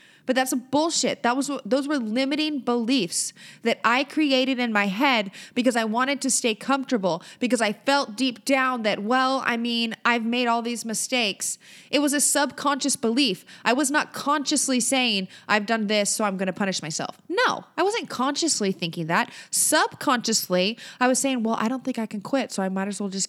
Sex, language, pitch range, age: female, English, 195-255 Hz, 20-39